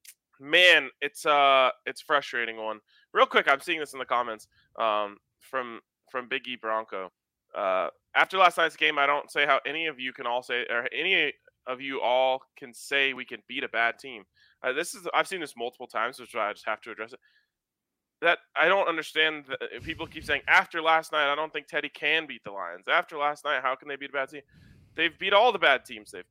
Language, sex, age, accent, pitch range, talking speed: English, male, 20-39, American, 110-150 Hz, 235 wpm